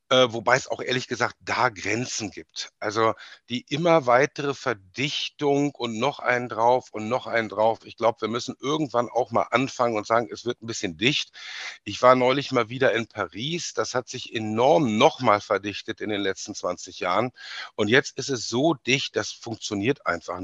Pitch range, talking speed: 115-140 Hz, 185 wpm